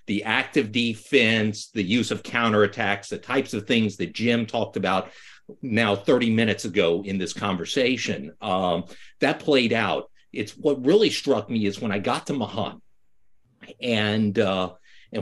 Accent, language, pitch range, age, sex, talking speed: American, English, 105-130 Hz, 50-69, male, 160 wpm